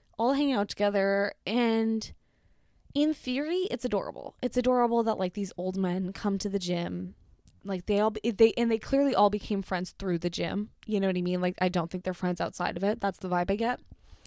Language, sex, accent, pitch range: English, female, American, 190-270 Hz